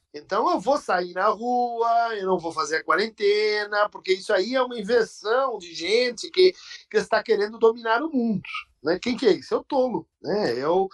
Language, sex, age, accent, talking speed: Portuguese, male, 50-69, Brazilian, 205 wpm